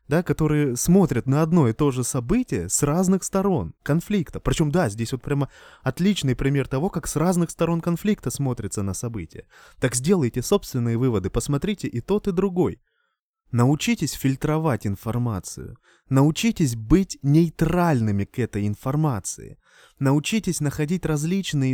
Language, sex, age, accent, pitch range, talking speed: Russian, male, 20-39, native, 115-160 Hz, 135 wpm